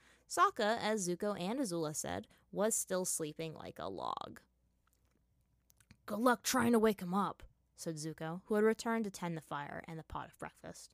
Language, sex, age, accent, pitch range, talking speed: English, female, 20-39, American, 170-255 Hz, 180 wpm